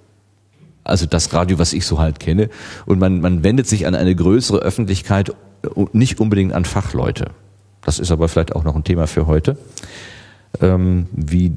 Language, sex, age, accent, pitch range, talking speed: German, male, 40-59, German, 90-115 Hz, 170 wpm